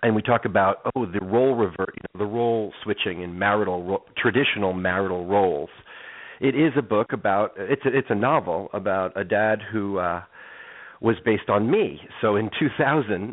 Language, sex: English, male